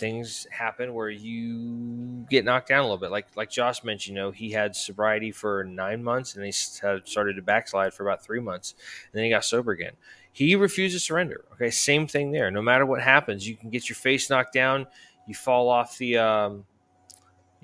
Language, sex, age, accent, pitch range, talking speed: English, male, 20-39, American, 100-125 Hz, 210 wpm